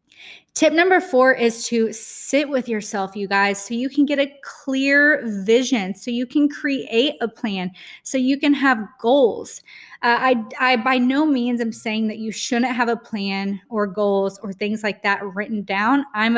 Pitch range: 210-255 Hz